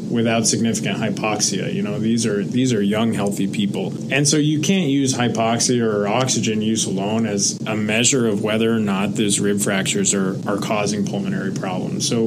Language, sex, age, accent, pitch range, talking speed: English, male, 20-39, American, 110-135 Hz, 185 wpm